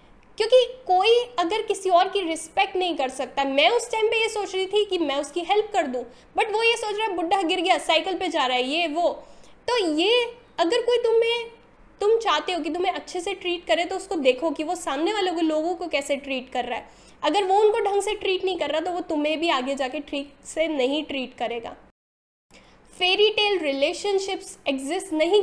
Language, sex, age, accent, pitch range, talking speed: Hindi, female, 10-29, native, 295-395 Hz, 220 wpm